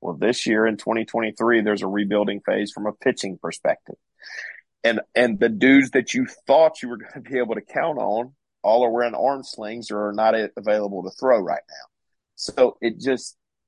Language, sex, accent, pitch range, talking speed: English, male, American, 110-140 Hz, 200 wpm